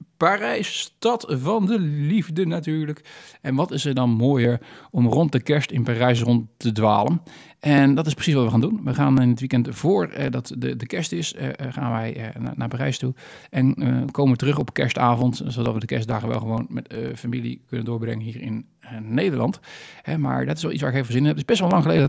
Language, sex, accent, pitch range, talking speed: Dutch, male, Dutch, 120-145 Hz, 220 wpm